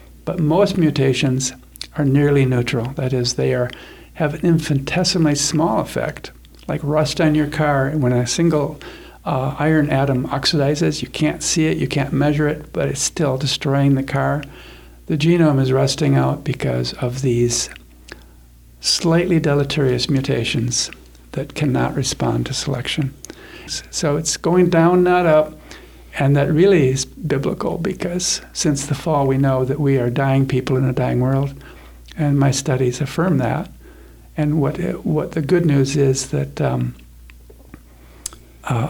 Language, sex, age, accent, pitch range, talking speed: English, male, 60-79, American, 125-155 Hz, 155 wpm